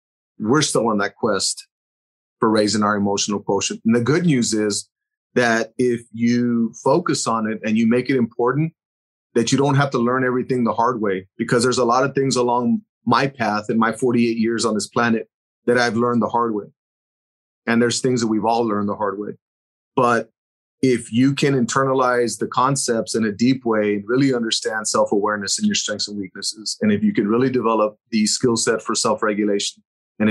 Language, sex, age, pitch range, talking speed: English, male, 30-49, 110-130 Hz, 195 wpm